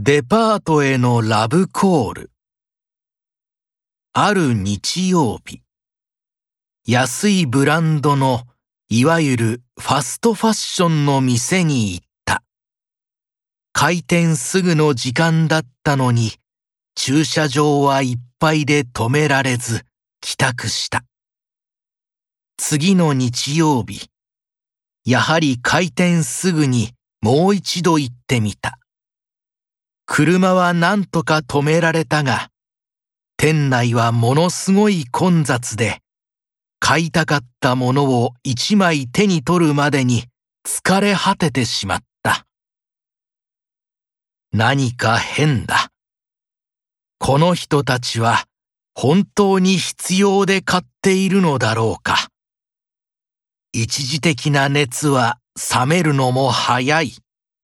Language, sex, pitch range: Japanese, male, 125-170 Hz